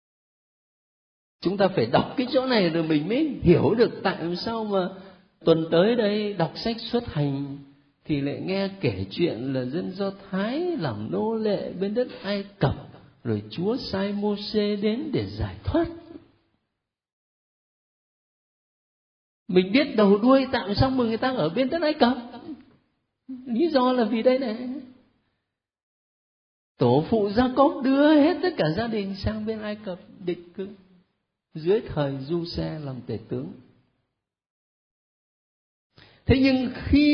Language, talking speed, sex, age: Vietnamese, 150 wpm, male, 50-69